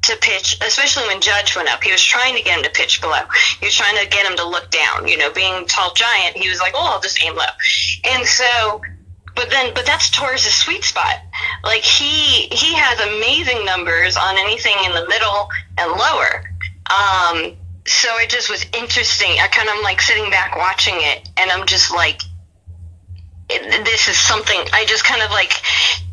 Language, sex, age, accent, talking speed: English, female, 20-39, American, 200 wpm